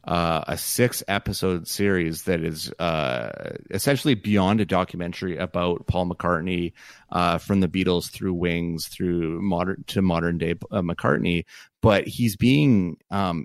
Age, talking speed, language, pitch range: 30-49, 145 wpm, English, 90-105 Hz